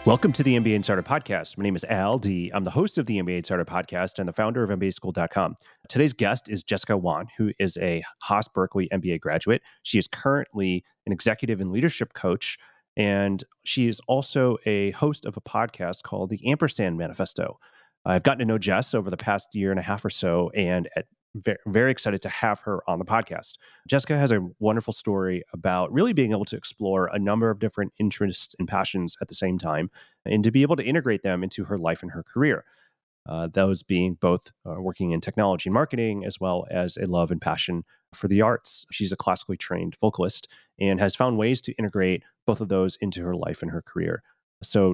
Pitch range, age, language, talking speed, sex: 90-115 Hz, 30-49, English, 210 wpm, male